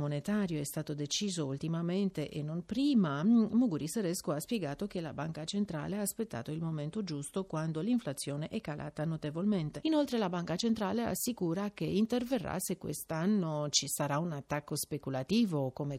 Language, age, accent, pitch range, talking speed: Italian, 40-59, native, 150-205 Hz, 155 wpm